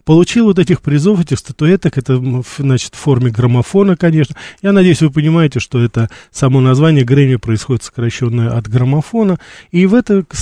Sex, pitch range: male, 125-170 Hz